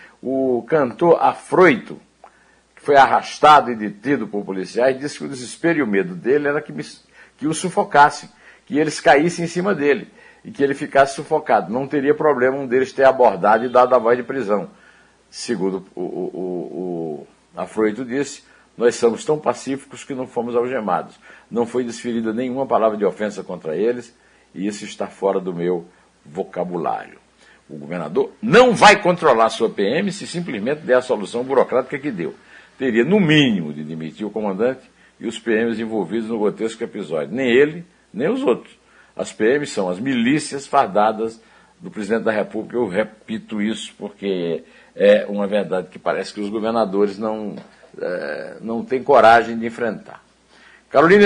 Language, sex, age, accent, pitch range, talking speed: Portuguese, male, 60-79, Brazilian, 105-150 Hz, 165 wpm